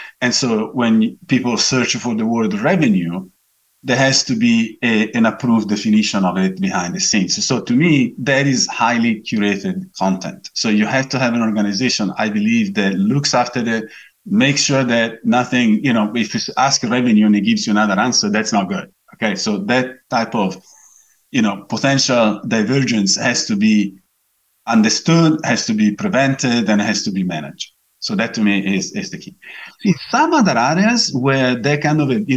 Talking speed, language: 185 wpm, English